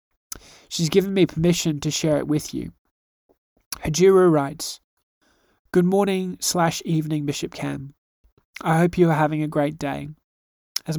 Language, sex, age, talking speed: English, male, 20-39, 140 wpm